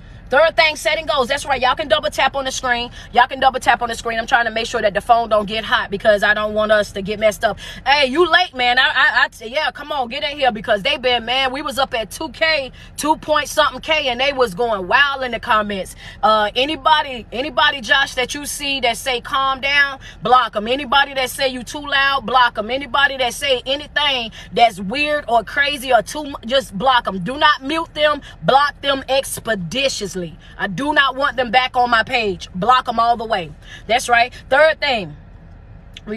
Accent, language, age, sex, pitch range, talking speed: American, English, 20-39, female, 225-290 Hz, 220 wpm